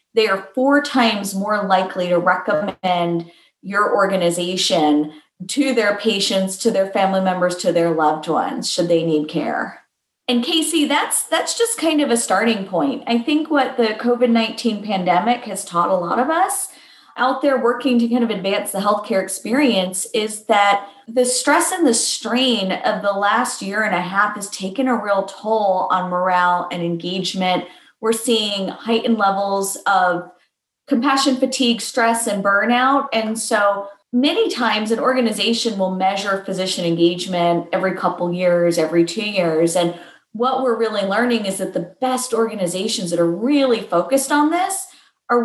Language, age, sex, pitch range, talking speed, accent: English, 30-49, female, 190-250 Hz, 160 wpm, American